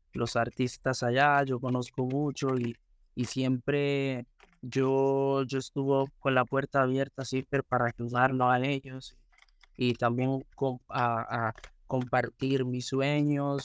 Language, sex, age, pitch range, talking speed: Spanish, male, 20-39, 125-140 Hz, 125 wpm